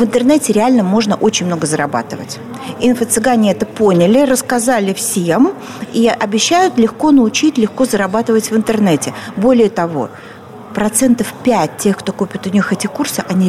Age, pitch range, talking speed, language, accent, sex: 40-59, 195-245 Hz, 140 wpm, Russian, native, female